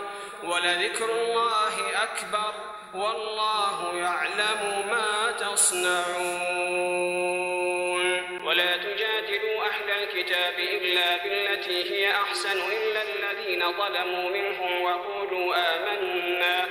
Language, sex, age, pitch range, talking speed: Arabic, male, 40-59, 180-220 Hz, 75 wpm